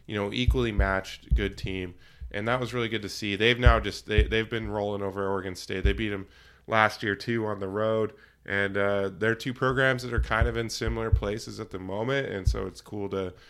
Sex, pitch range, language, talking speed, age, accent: male, 95-110 Hz, English, 230 wpm, 20-39, American